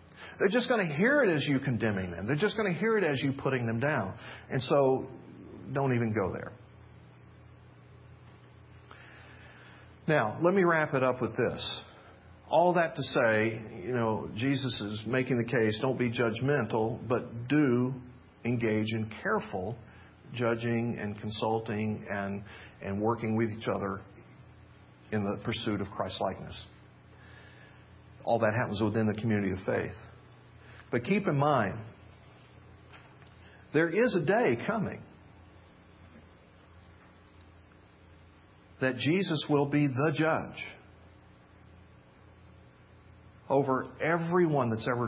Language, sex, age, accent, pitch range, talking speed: English, male, 50-69, American, 105-140 Hz, 125 wpm